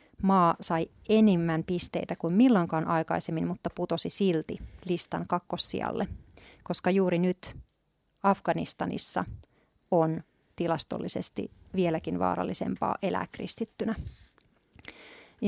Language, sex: Finnish, female